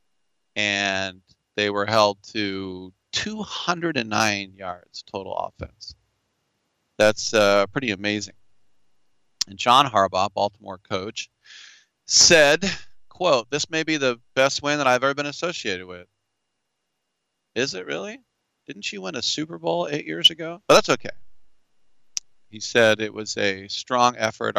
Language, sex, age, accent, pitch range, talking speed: English, male, 40-59, American, 100-125 Hz, 130 wpm